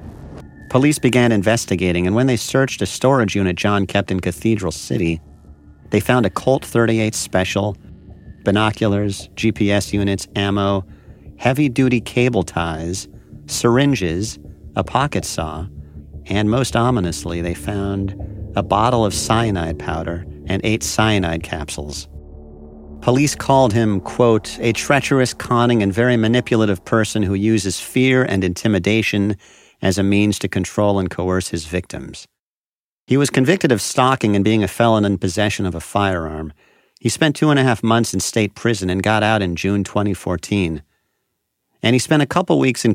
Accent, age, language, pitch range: American, 50-69, English, 90-115 Hz